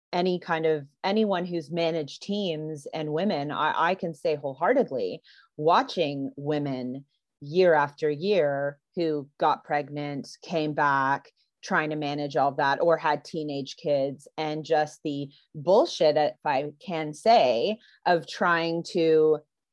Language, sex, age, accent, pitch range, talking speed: English, female, 30-49, American, 150-210 Hz, 135 wpm